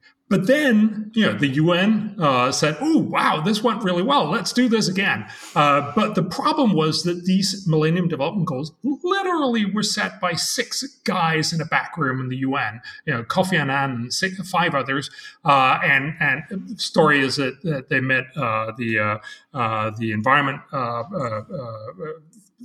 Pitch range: 130-205 Hz